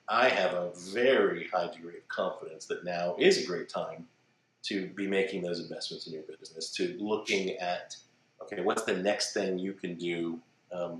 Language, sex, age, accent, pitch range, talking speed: English, male, 40-59, American, 90-130 Hz, 185 wpm